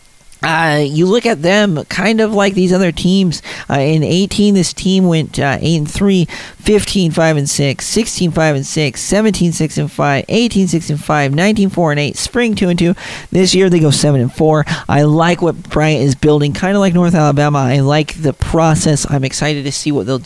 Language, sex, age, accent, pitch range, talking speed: English, male, 40-59, American, 140-180 Hz, 165 wpm